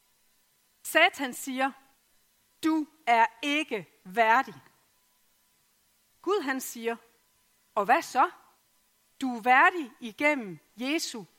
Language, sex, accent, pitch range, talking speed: Danish, female, native, 225-320 Hz, 90 wpm